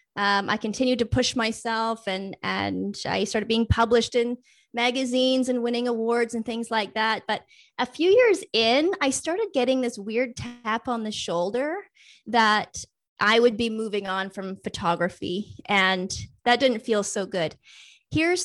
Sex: female